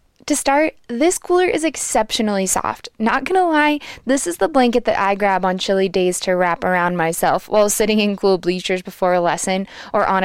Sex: female